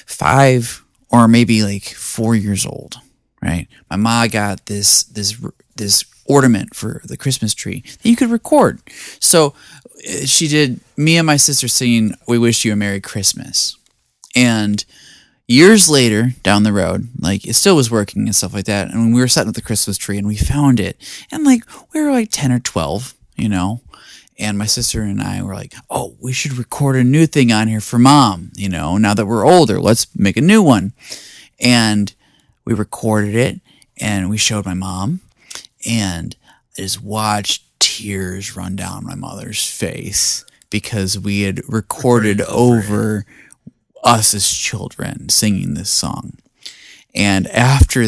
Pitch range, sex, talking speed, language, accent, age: 100-125 Hz, male, 165 wpm, English, American, 20-39